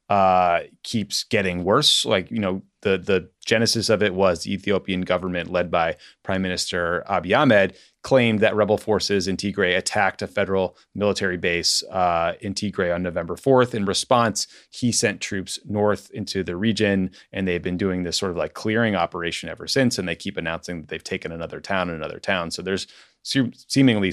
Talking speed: 190 wpm